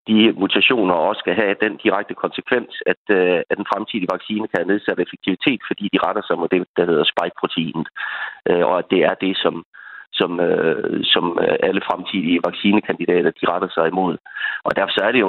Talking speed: 180 wpm